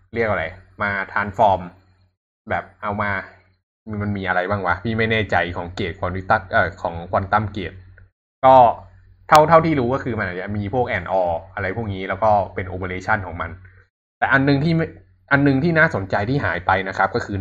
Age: 20-39